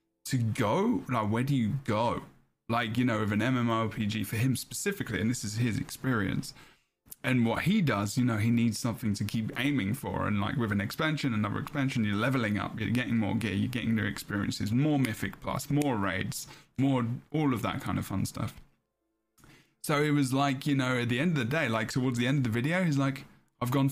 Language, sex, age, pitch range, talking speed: English, male, 10-29, 115-140 Hz, 220 wpm